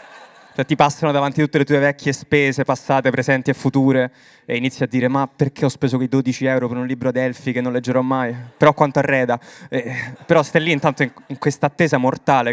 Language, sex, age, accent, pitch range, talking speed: Italian, male, 20-39, native, 125-145 Hz, 210 wpm